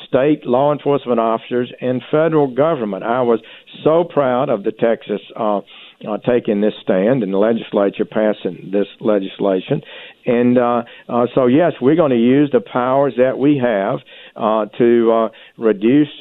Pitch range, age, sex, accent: 110-135 Hz, 50-69, male, American